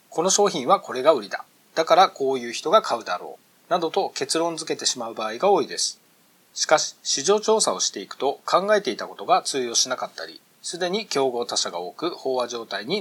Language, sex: Japanese, male